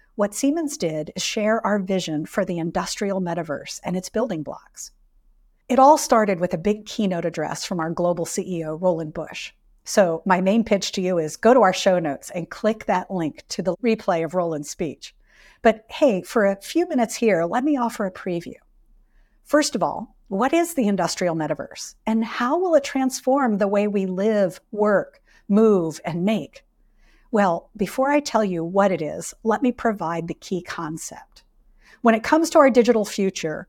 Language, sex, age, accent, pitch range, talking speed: English, female, 50-69, American, 175-230 Hz, 185 wpm